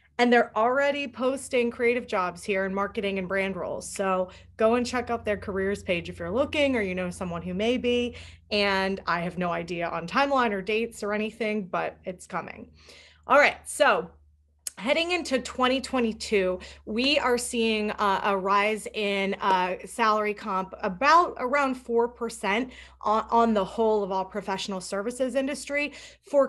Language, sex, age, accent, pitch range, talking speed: English, female, 30-49, American, 195-245 Hz, 165 wpm